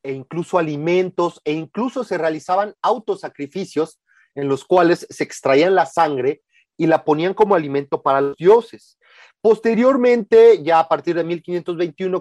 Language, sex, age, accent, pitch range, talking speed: Spanish, male, 40-59, Mexican, 155-200 Hz, 145 wpm